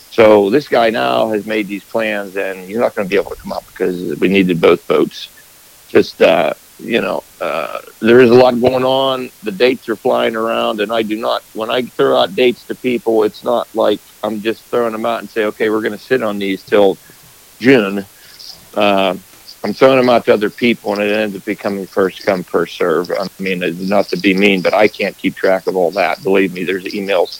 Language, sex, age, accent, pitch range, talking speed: English, male, 50-69, American, 100-120 Hz, 230 wpm